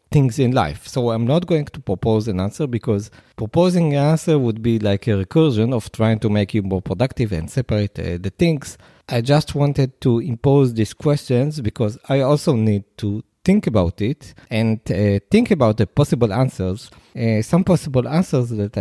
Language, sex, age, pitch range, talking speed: English, male, 40-59, 105-145 Hz, 190 wpm